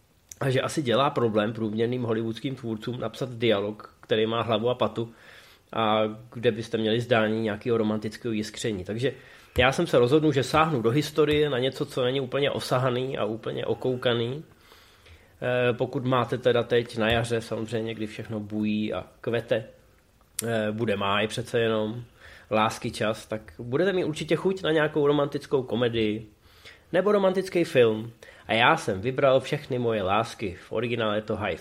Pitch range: 110-140 Hz